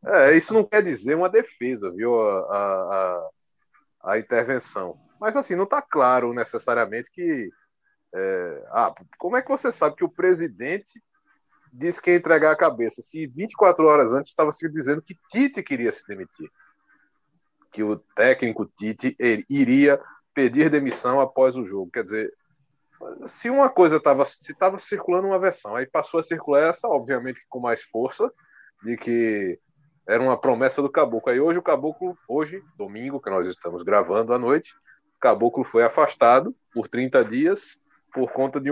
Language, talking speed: Portuguese, 155 wpm